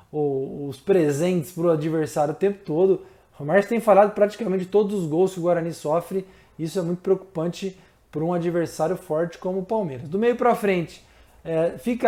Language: Portuguese